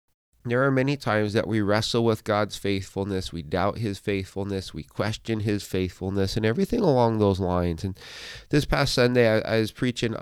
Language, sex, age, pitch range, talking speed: English, male, 30-49, 100-125 Hz, 180 wpm